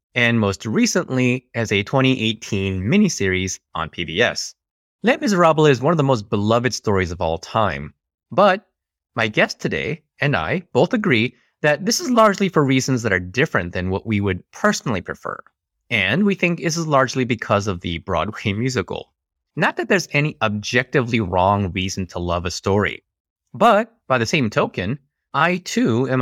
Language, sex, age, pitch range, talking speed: English, male, 30-49, 95-150 Hz, 170 wpm